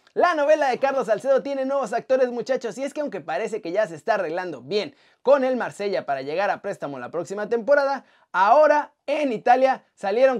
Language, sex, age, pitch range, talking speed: Spanish, male, 30-49, 215-280 Hz, 195 wpm